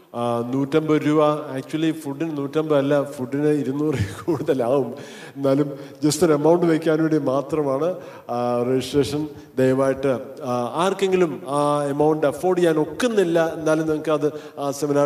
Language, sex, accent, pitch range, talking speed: Malayalam, male, native, 130-160 Hz, 100 wpm